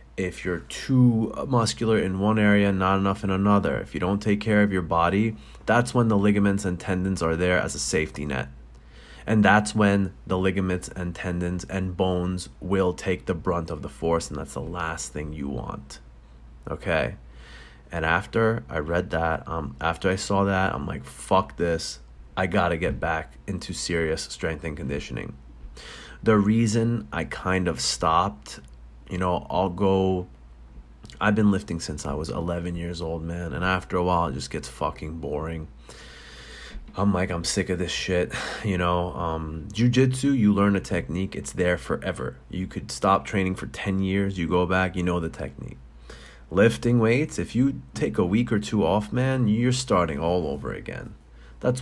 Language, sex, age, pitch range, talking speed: English, male, 20-39, 75-100 Hz, 180 wpm